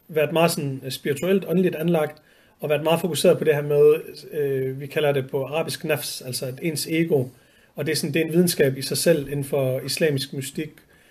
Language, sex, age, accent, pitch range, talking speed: Danish, male, 40-59, native, 140-180 Hz, 215 wpm